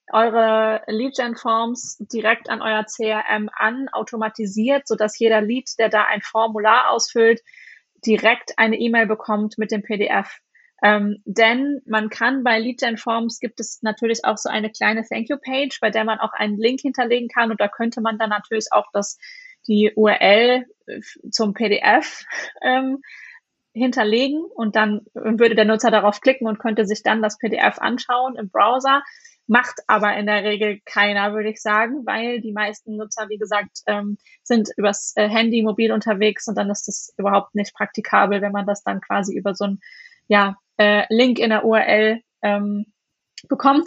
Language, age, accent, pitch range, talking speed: German, 20-39, German, 210-235 Hz, 165 wpm